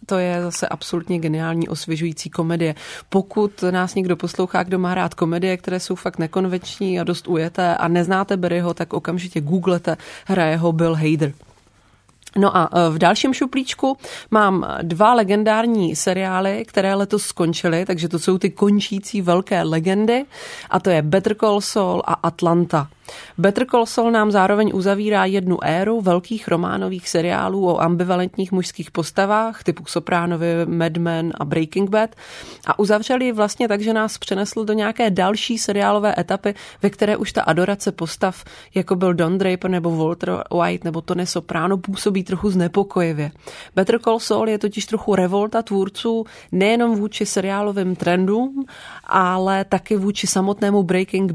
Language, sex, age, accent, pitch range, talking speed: Czech, female, 30-49, native, 170-205 Hz, 155 wpm